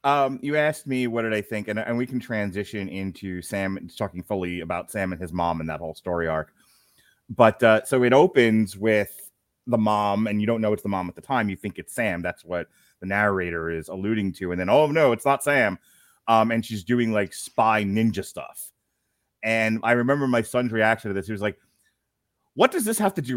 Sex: male